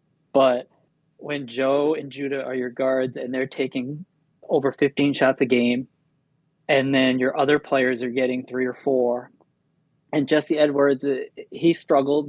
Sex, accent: male, American